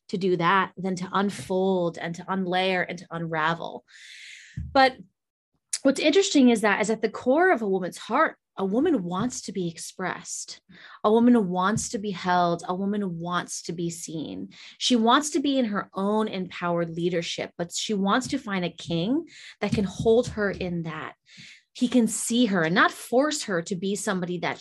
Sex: female